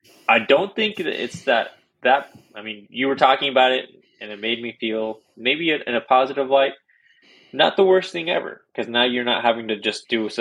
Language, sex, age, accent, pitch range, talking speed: English, male, 20-39, American, 105-120 Hz, 210 wpm